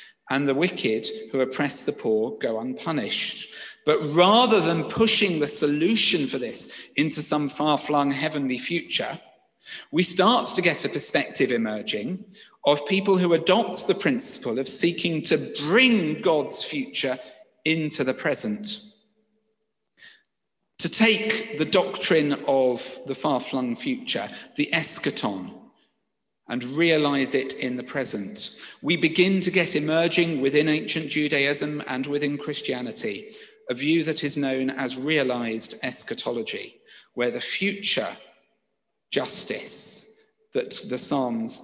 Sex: male